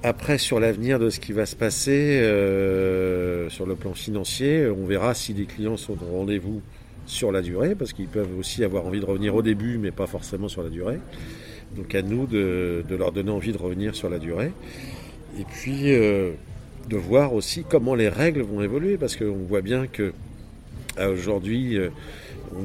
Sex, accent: male, French